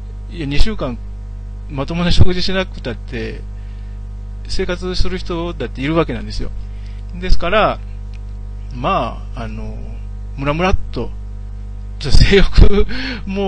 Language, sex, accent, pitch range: Japanese, male, native, 100-155 Hz